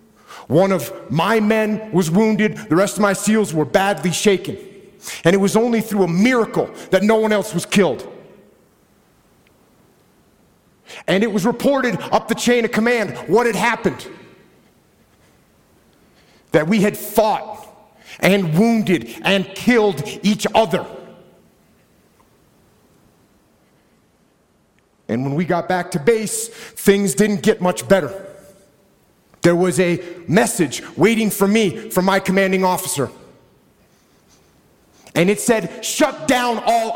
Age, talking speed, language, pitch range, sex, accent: 50-69, 125 wpm, English, 170-215 Hz, male, American